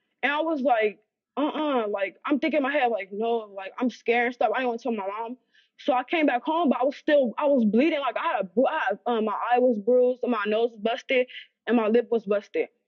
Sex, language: female, English